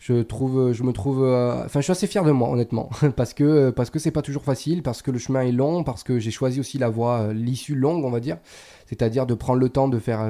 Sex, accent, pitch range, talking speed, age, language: male, French, 115-135 Hz, 285 wpm, 20-39, French